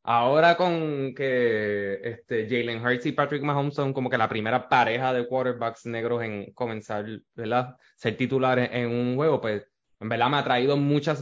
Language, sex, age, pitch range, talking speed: English, male, 20-39, 115-150 Hz, 175 wpm